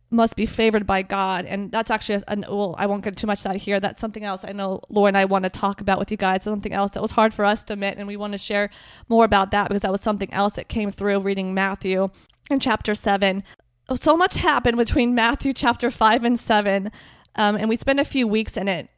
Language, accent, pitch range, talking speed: English, American, 200-230 Hz, 260 wpm